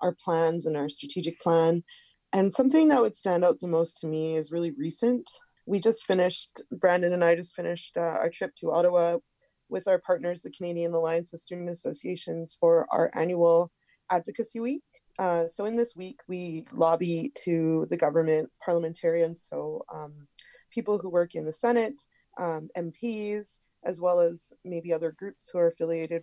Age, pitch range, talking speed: 20-39, 165-205 Hz, 175 wpm